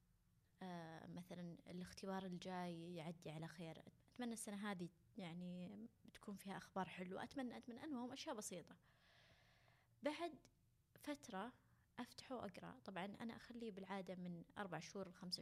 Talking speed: 125 wpm